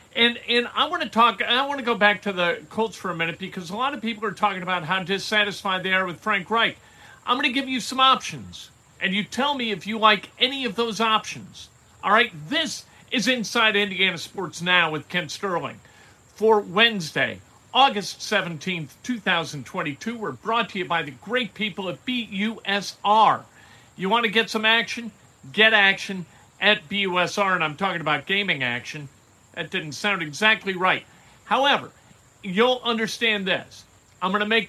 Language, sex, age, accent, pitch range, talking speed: English, male, 50-69, American, 175-220 Hz, 180 wpm